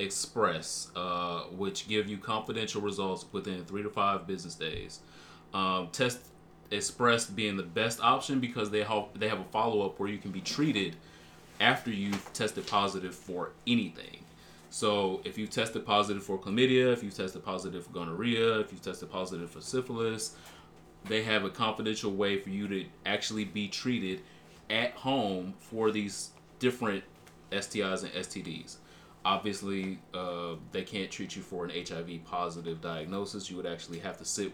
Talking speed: 160 wpm